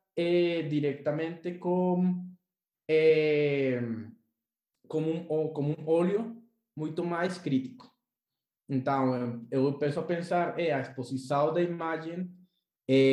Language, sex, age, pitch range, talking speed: Portuguese, male, 20-39, 140-190 Hz, 115 wpm